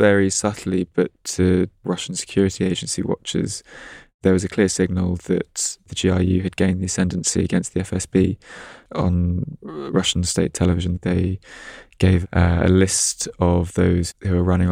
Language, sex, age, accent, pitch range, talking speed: English, male, 20-39, British, 90-100 Hz, 145 wpm